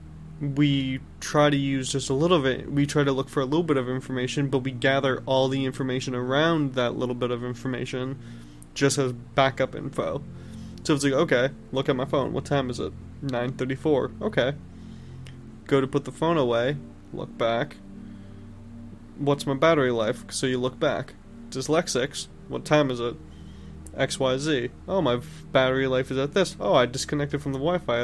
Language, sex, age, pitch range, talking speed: English, male, 20-39, 120-145 Hz, 180 wpm